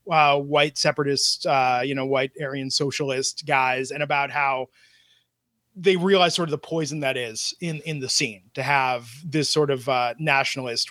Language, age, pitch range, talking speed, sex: English, 20-39, 135-170 Hz, 175 wpm, male